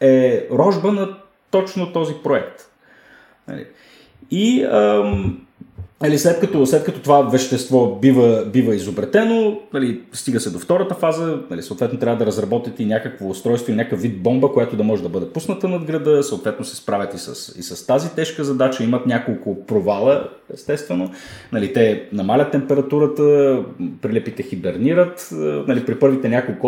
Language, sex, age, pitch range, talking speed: Bulgarian, male, 30-49, 120-165 Hz, 155 wpm